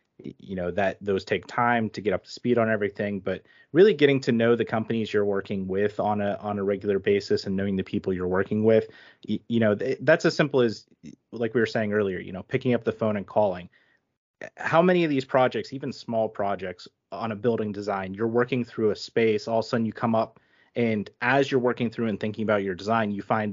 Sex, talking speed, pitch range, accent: male, 230 wpm, 100-120 Hz, American